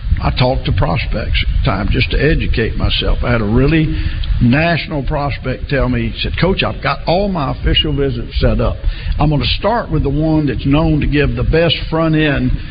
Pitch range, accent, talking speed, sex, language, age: 115-150 Hz, American, 210 wpm, male, English, 60-79